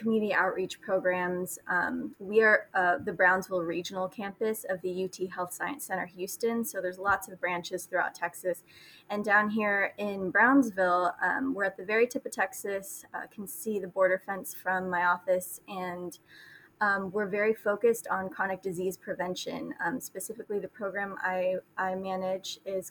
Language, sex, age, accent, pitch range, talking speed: English, female, 20-39, American, 185-210 Hz, 170 wpm